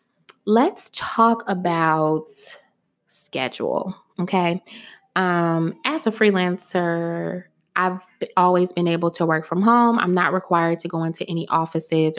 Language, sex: English, female